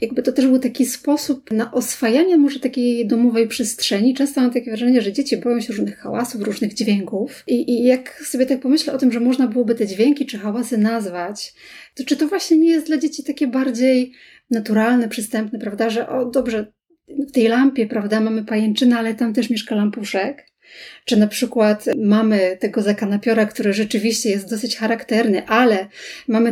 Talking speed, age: 185 wpm, 30-49